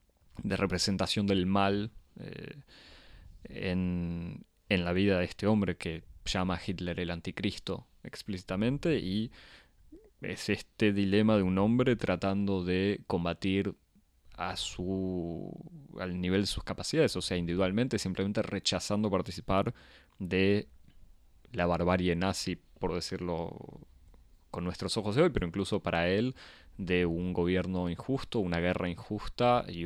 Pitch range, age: 85-100 Hz, 20-39